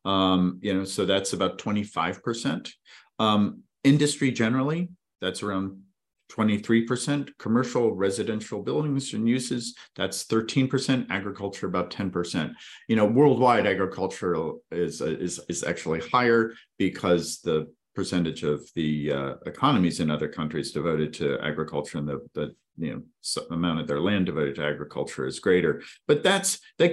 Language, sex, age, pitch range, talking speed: English, male, 40-59, 85-120 Hz, 145 wpm